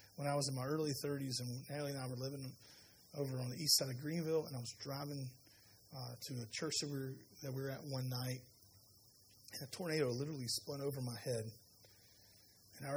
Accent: American